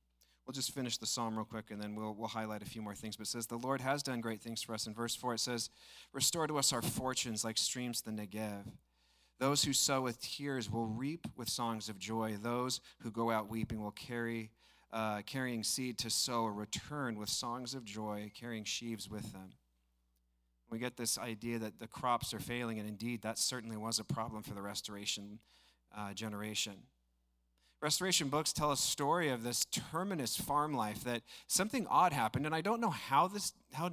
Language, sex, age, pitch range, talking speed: English, male, 40-59, 105-145 Hz, 205 wpm